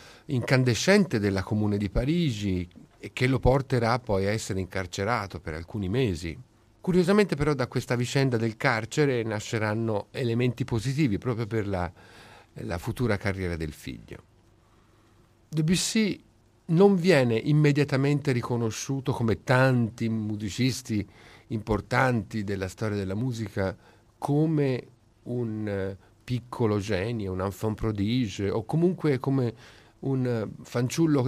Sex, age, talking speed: male, 50-69, 115 wpm